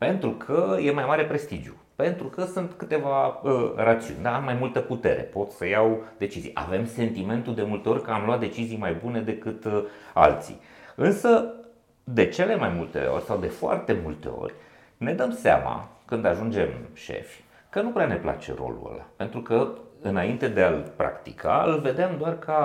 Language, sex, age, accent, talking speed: Romanian, male, 30-49, native, 185 wpm